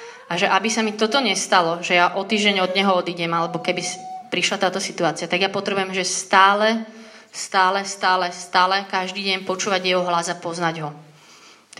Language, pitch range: Slovak, 175-195 Hz